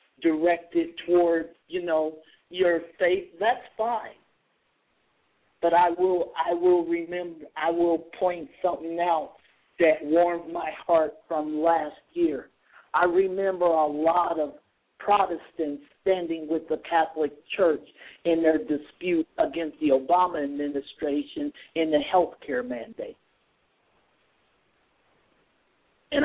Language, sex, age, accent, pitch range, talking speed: English, male, 50-69, American, 160-190 Hz, 115 wpm